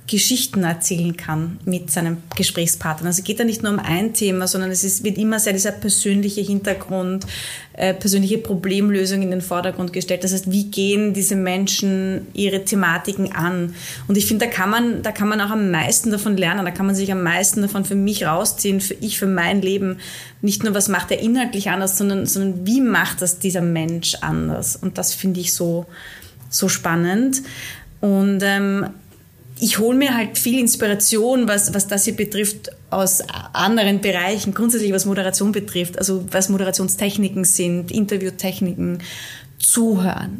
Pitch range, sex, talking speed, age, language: 185-205 Hz, female, 175 wpm, 20-39, German